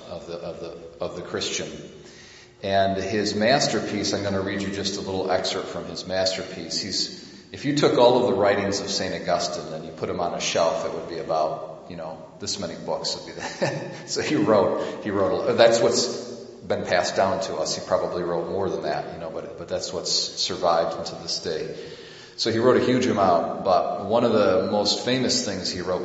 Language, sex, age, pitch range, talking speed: English, male, 40-59, 90-110 Hz, 220 wpm